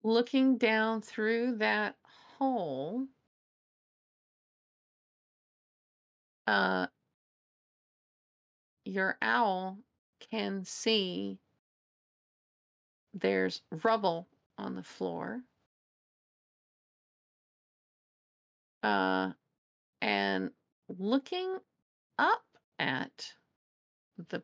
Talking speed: 50 wpm